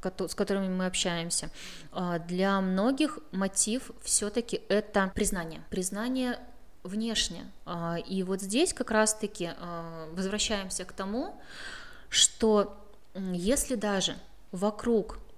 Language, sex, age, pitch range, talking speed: Russian, female, 20-39, 185-225 Hz, 100 wpm